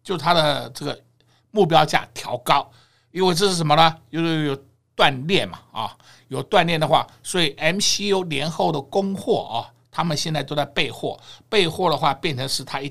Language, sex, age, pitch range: Chinese, male, 60-79, 140-205 Hz